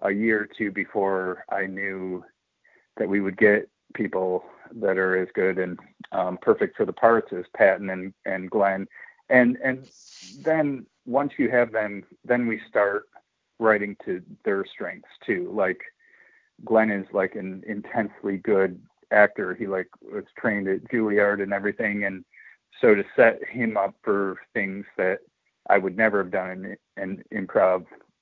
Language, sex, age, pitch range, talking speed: English, male, 30-49, 95-110 Hz, 160 wpm